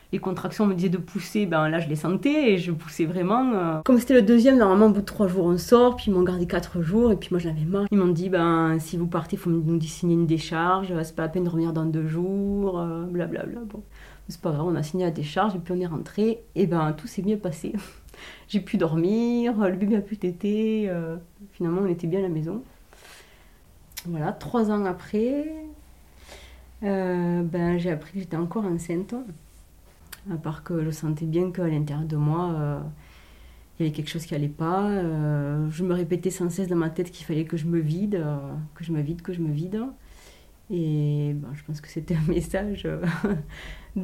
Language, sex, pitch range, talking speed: French, female, 160-195 Hz, 215 wpm